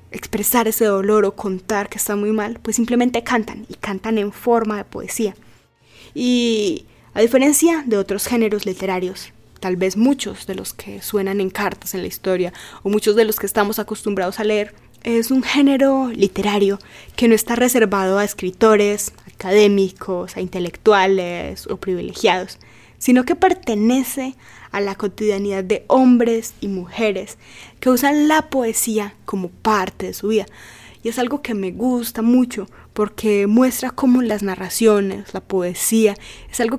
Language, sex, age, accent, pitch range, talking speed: Spanish, female, 20-39, Colombian, 195-235 Hz, 160 wpm